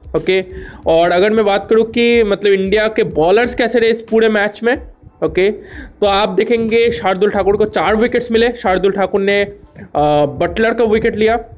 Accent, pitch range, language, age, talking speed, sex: native, 175-220 Hz, Hindi, 20-39, 185 wpm, male